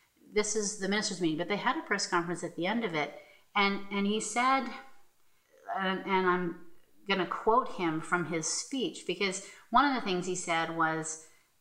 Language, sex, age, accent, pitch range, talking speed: English, female, 40-59, American, 165-205 Hz, 195 wpm